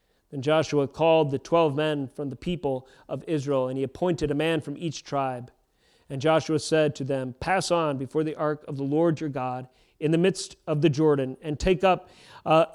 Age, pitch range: 40-59, 145-190 Hz